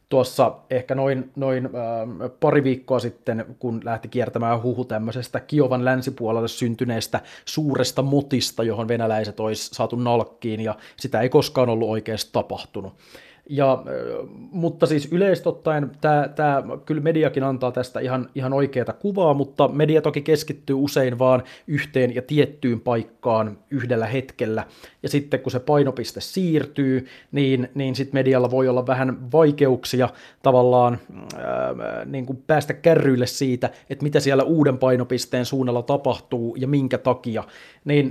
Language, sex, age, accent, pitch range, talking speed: Finnish, male, 30-49, native, 125-140 Hz, 130 wpm